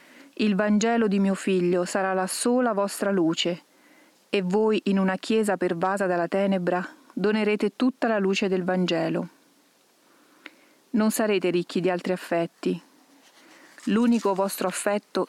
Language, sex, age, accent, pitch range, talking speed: Italian, female, 40-59, native, 185-235 Hz, 130 wpm